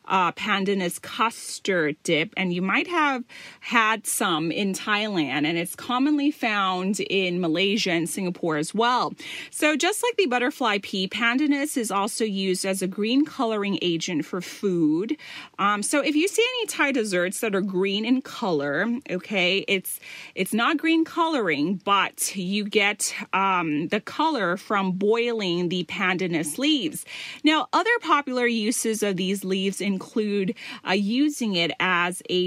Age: 30-49